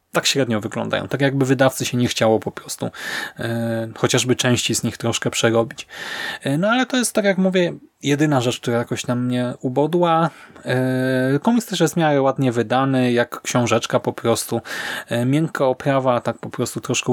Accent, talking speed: native, 180 wpm